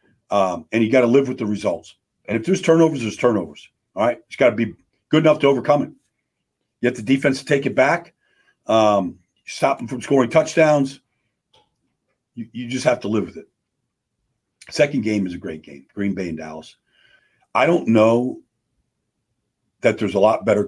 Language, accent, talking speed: English, American, 190 wpm